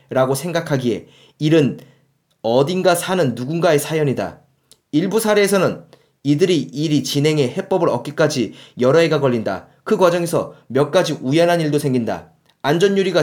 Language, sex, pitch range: Korean, male, 140-175 Hz